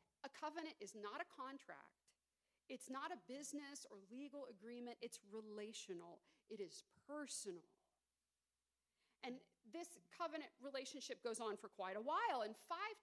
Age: 40-59